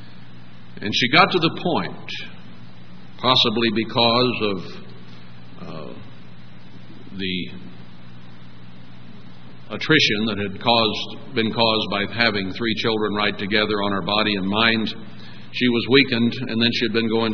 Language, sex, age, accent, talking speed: English, male, 60-79, American, 130 wpm